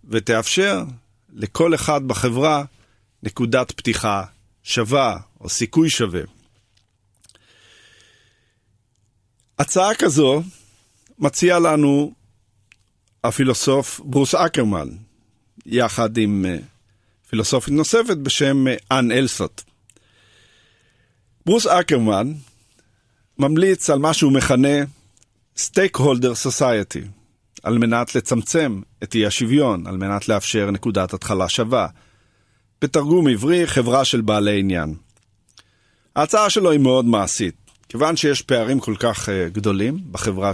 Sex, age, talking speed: male, 50-69, 95 wpm